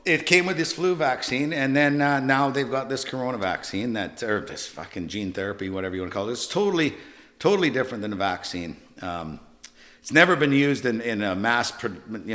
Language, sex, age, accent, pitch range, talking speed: English, male, 50-69, American, 95-120 Hz, 215 wpm